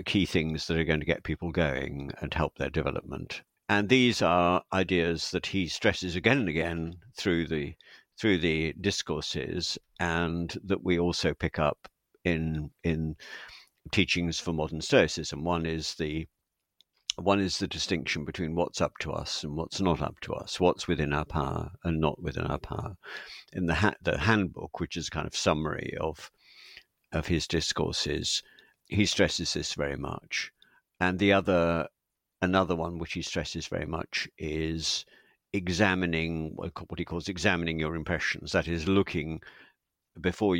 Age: 60-79